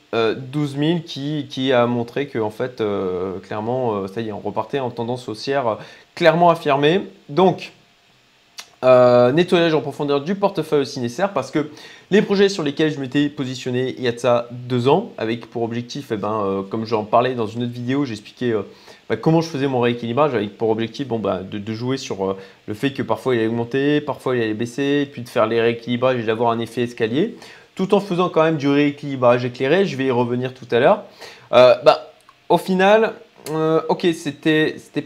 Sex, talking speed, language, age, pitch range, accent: male, 210 wpm, French, 20-39, 120-155 Hz, French